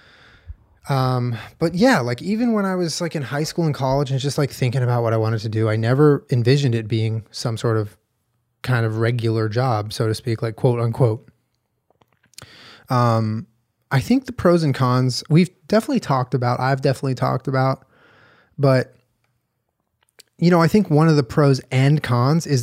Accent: American